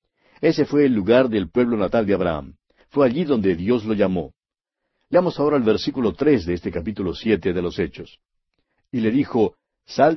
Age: 60-79